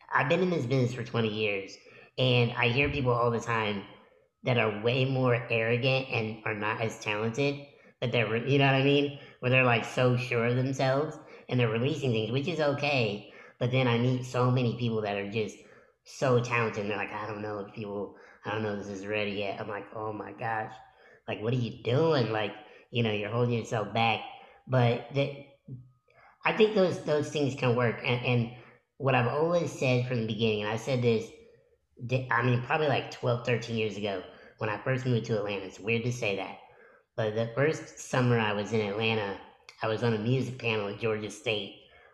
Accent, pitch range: American, 110-140 Hz